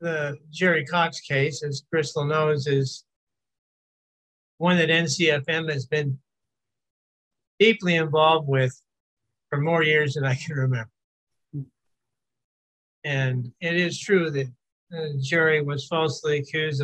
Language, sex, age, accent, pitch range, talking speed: English, male, 60-79, American, 135-165 Hz, 115 wpm